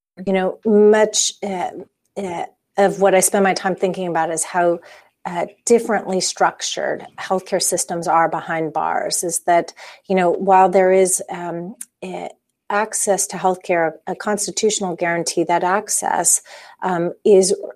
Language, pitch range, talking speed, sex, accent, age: English, 175-200 Hz, 135 wpm, female, American, 40-59